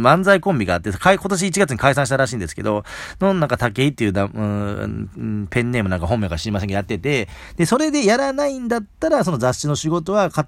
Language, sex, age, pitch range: Japanese, male, 40-59, 90-150 Hz